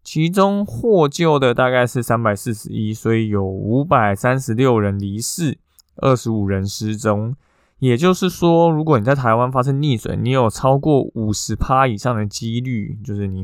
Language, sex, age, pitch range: Chinese, male, 20-39, 105-135 Hz